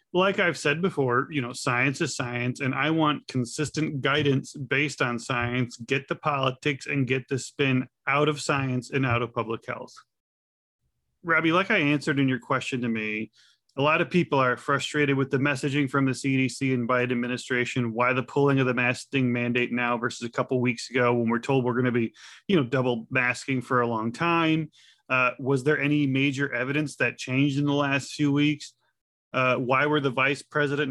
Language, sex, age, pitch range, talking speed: English, male, 30-49, 125-145 Hz, 200 wpm